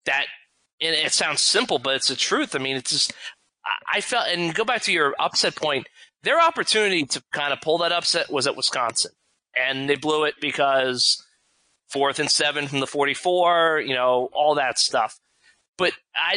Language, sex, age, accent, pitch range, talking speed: English, male, 20-39, American, 145-205 Hz, 190 wpm